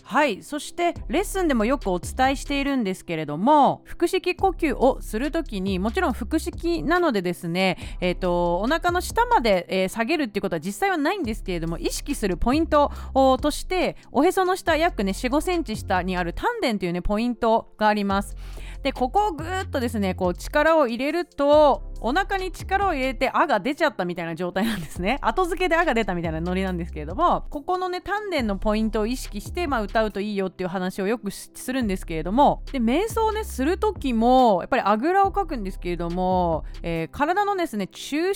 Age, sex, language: 30-49, female, Japanese